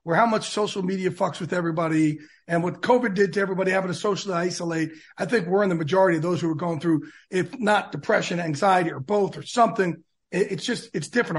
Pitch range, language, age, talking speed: 165-210 Hz, English, 40-59, 220 wpm